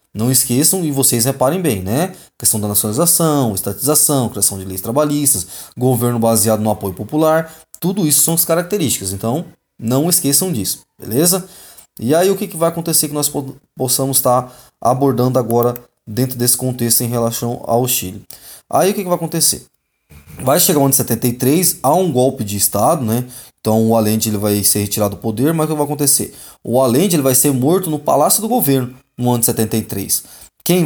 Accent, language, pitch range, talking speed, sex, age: Brazilian, Portuguese, 115-150 Hz, 175 wpm, male, 20-39